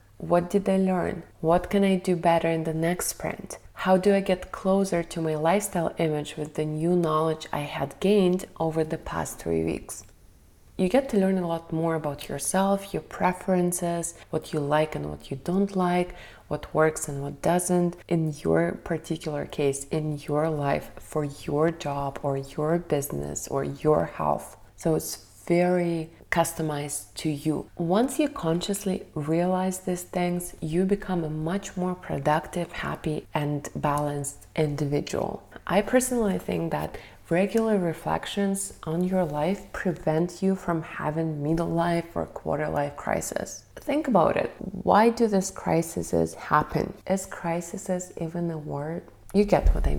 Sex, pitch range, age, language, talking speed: female, 150-185 Hz, 20-39, English, 160 wpm